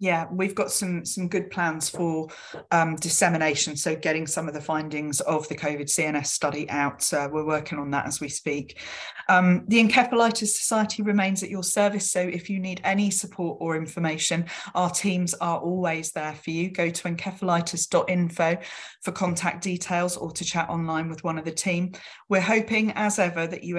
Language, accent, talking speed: English, British, 185 wpm